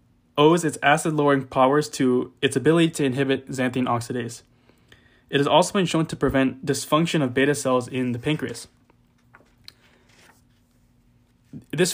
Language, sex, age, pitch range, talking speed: English, male, 20-39, 125-145 Hz, 130 wpm